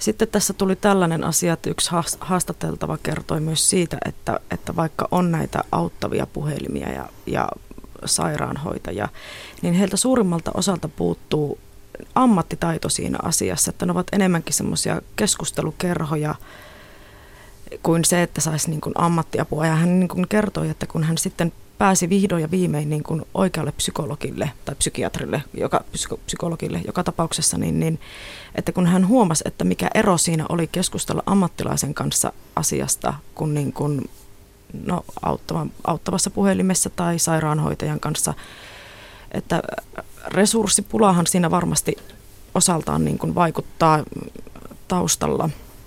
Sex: female